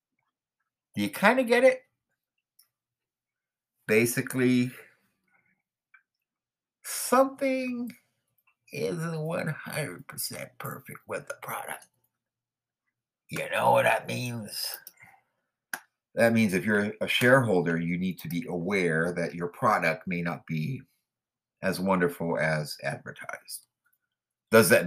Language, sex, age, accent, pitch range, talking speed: English, male, 50-69, American, 80-120 Hz, 100 wpm